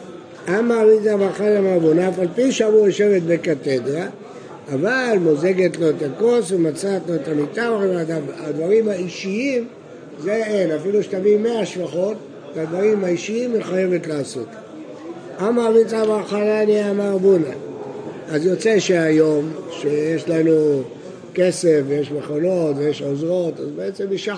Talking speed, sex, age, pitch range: 125 wpm, male, 60-79, 165-210 Hz